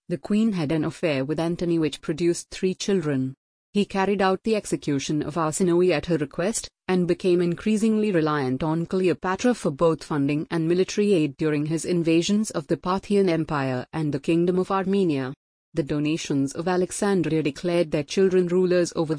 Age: 30-49